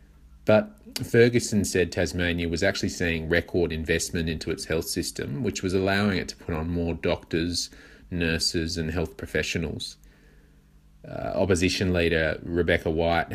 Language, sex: English, male